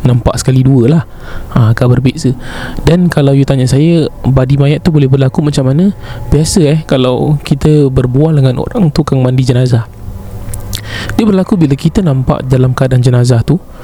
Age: 20-39